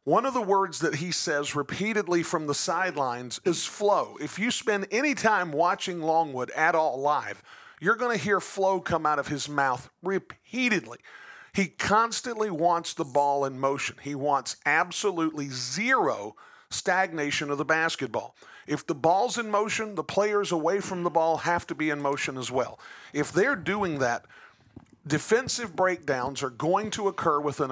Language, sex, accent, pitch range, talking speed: English, male, American, 145-195 Hz, 170 wpm